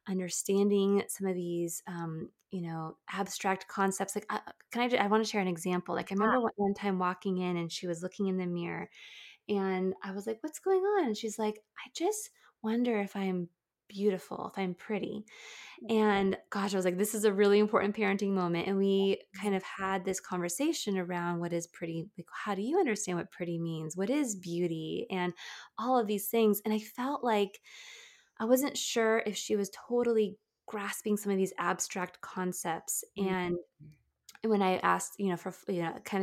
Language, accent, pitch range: English, American, 180-215 Hz